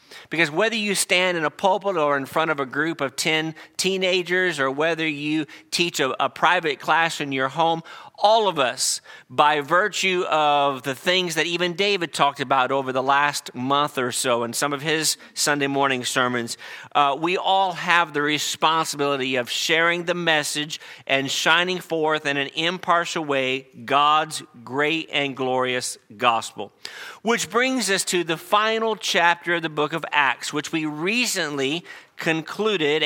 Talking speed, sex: 165 wpm, male